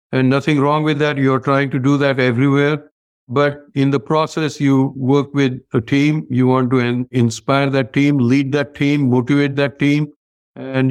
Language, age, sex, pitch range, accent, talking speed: English, 60-79, male, 120-145 Hz, Indian, 180 wpm